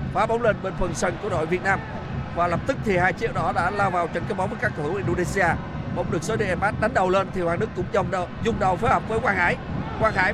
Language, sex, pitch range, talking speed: Vietnamese, male, 150-180 Hz, 290 wpm